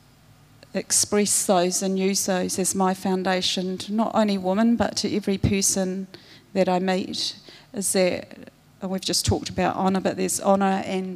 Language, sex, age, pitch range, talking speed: English, female, 40-59, 185-210 Hz, 160 wpm